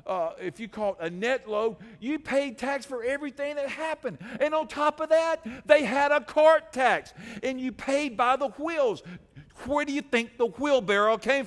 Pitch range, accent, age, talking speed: 175-280 Hz, American, 50-69, 195 wpm